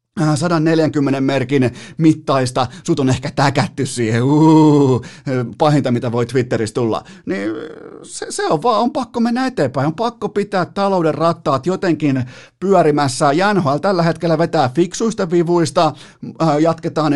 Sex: male